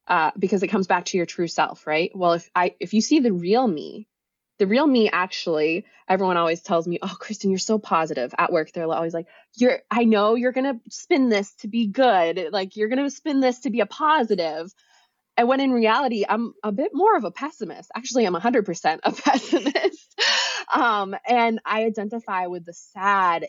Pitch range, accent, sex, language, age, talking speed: 175-240 Hz, American, female, English, 20-39, 210 wpm